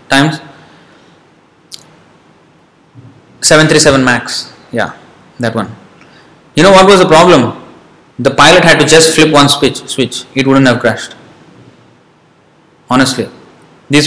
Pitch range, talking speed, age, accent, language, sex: 130-160 Hz, 110 wpm, 20-39, Indian, English, male